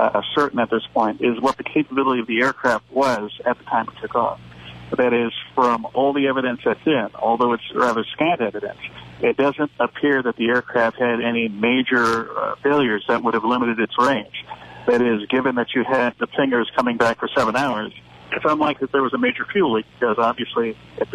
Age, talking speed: 50-69, 210 wpm